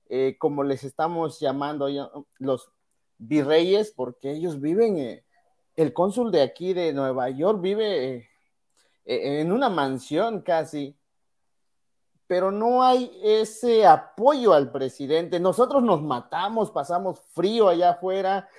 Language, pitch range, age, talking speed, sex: Spanish, 145-210 Hz, 40-59, 125 wpm, male